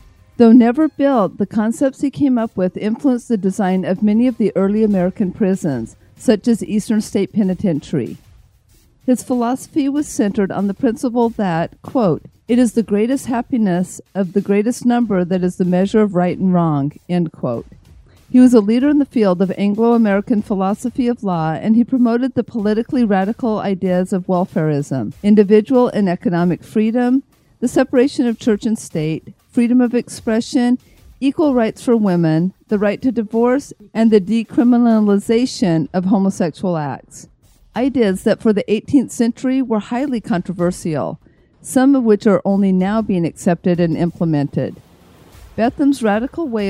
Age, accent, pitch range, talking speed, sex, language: 50-69, American, 185-240 Hz, 155 wpm, female, English